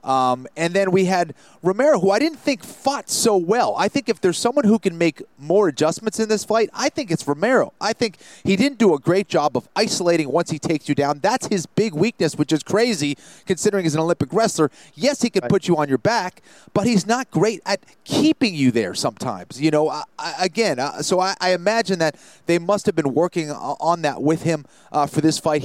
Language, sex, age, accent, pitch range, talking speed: English, male, 30-49, American, 150-205 Hz, 225 wpm